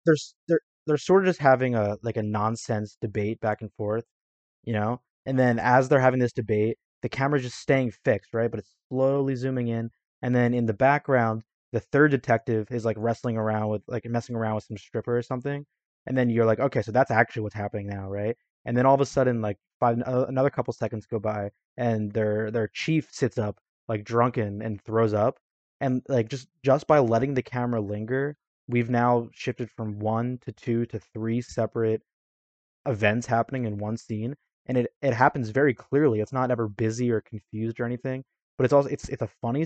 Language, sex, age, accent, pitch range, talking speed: English, male, 20-39, American, 110-130 Hz, 205 wpm